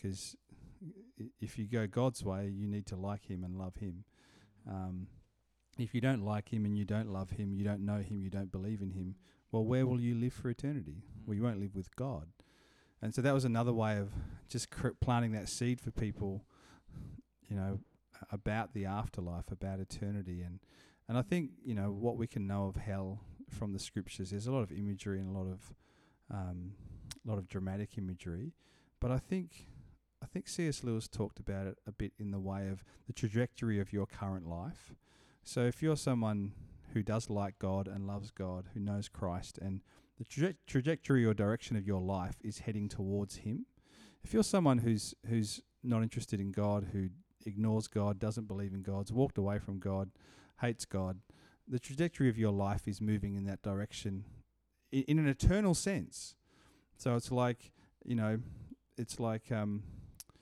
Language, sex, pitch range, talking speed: English, male, 95-120 Hz, 190 wpm